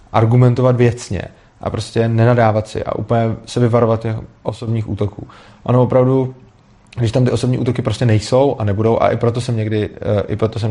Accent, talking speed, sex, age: native, 160 wpm, male, 30-49